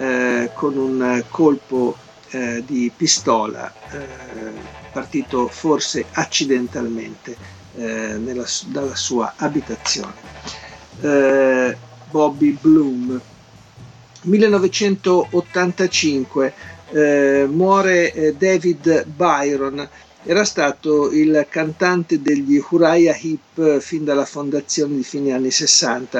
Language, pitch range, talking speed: Italian, 130-160 Hz, 85 wpm